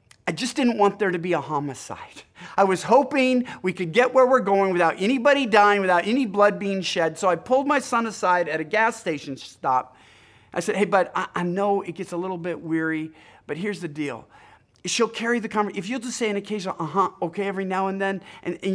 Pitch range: 155-195 Hz